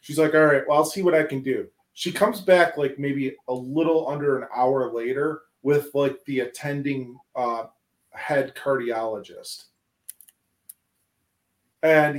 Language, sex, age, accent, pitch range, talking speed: English, male, 30-49, American, 120-155 Hz, 150 wpm